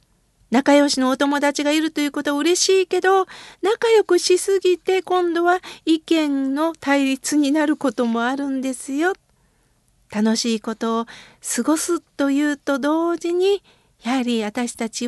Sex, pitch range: female, 245-340 Hz